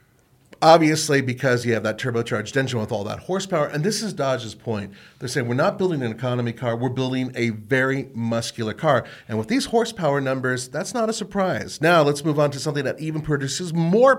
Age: 40-59